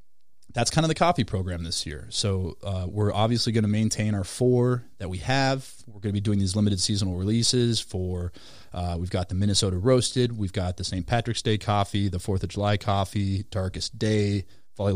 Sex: male